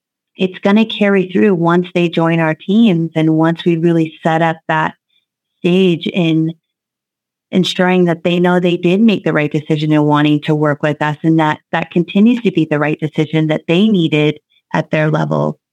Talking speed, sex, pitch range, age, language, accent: 190 wpm, female, 155-180 Hz, 30-49, English, American